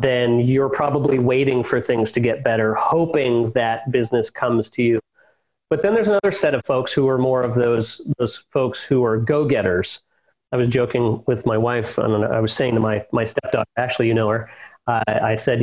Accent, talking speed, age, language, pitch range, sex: American, 215 wpm, 40-59, English, 115-145 Hz, male